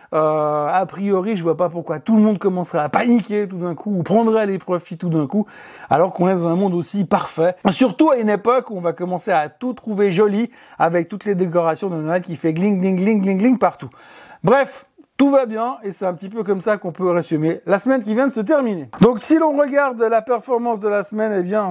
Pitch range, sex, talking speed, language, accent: 180-225 Hz, male, 245 wpm, French, French